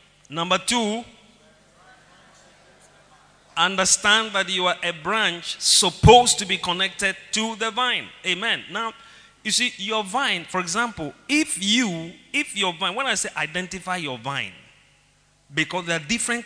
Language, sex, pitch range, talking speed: English, male, 160-225 Hz, 140 wpm